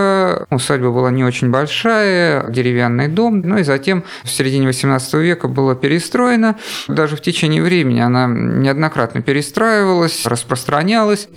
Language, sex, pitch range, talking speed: Russian, male, 125-170 Hz, 130 wpm